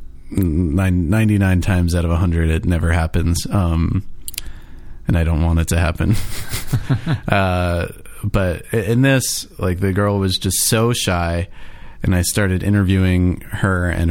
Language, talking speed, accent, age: English, 150 wpm, American, 30-49